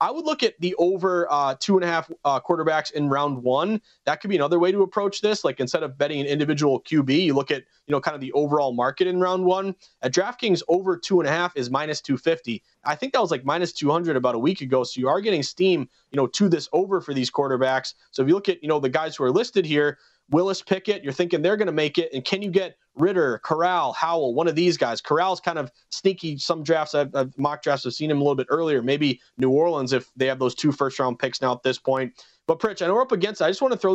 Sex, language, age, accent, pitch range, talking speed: male, English, 30-49, American, 145-185 Hz, 275 wpm